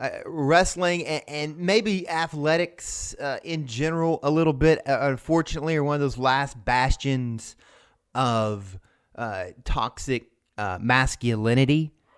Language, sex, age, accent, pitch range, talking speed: English, male, 30-49, American, 110-140 Hz, 125 wpm